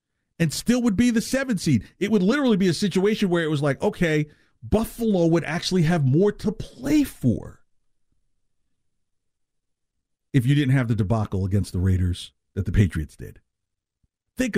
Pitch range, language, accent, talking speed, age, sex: 115-180 Hz, English, American, 165 wpm, 50-69, male